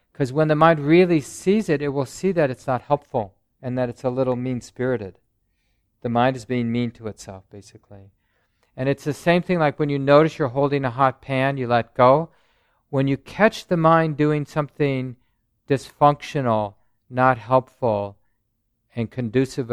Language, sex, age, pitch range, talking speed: English, male, 50-69, 110-145 Hz, 175 wpm